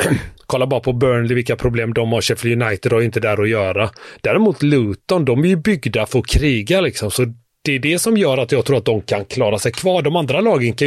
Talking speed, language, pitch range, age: 245 wpm, Swedish, 110-140 Hz, 30-49